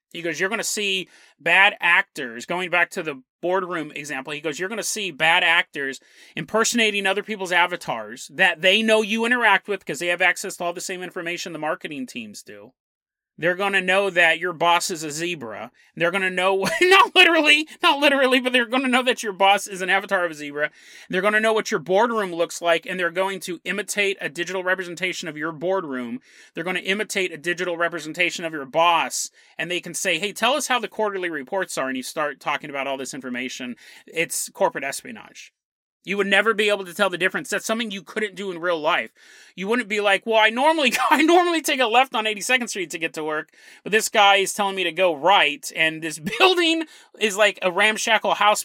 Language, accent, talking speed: English, American, 225 wpm